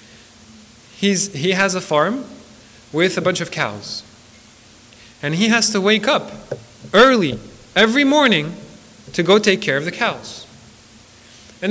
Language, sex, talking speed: English, male, 140 wpm